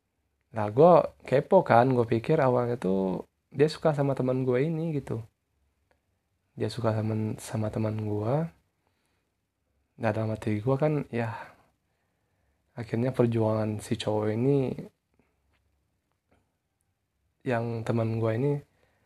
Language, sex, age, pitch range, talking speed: Indonesian, male, 20-39, 95-125 Hz, 115 wpm